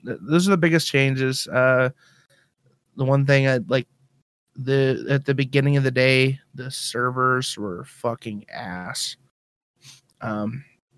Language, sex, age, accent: English, male, 20-39, American